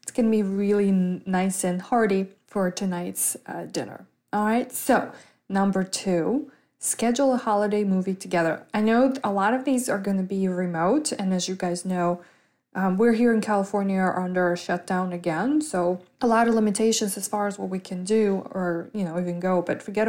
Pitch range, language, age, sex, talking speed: 185-220 Hz, English, 20-39, female, 195 wpm